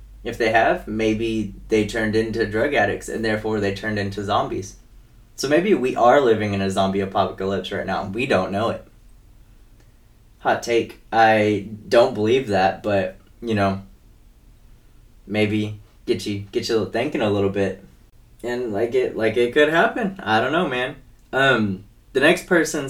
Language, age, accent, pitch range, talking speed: English, 20-39, American, 100-115 Hz, 170 wpm